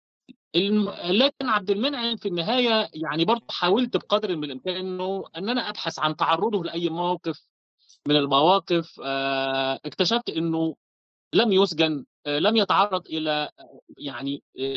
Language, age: Arabic, 30-49